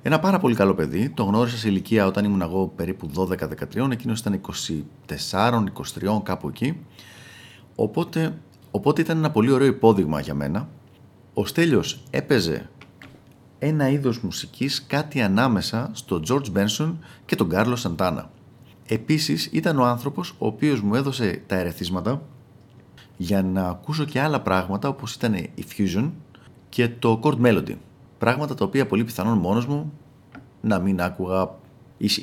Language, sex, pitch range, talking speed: Greek, male, 100-135 Hz, 145 wpm